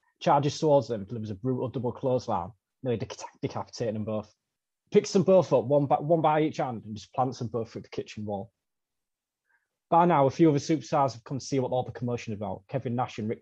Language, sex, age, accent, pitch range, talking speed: English, male, 20-39, British, 110-140 Hz, 225 wpm